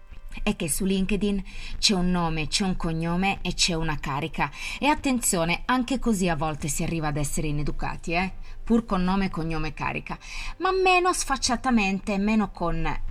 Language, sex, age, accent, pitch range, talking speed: Italian, female, 20-39, native, 155-210 Hz, 165 wpm